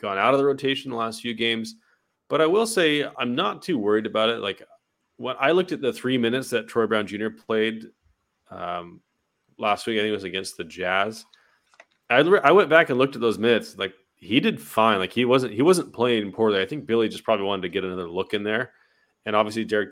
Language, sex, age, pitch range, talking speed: English, male, 30-49, 95-115 Hz, 235 wpm